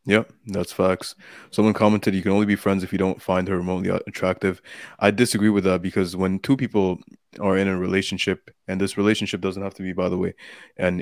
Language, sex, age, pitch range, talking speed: English, male, 20-39, 95-105 Hz, 220 wpm